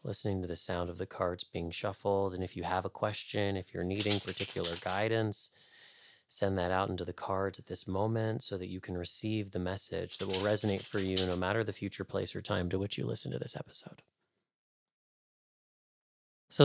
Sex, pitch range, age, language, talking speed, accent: male, 95-115 Hz, 30-49, English, 200 wpm, American